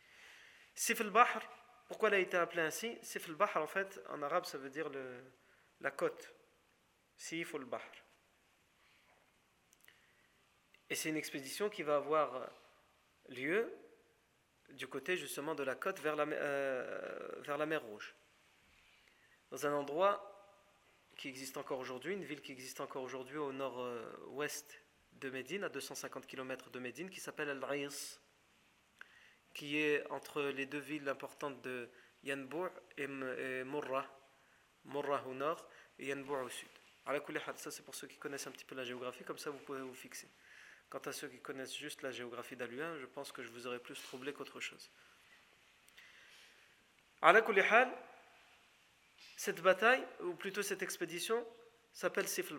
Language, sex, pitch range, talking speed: French, male, 135-195 Hz, 150 wpm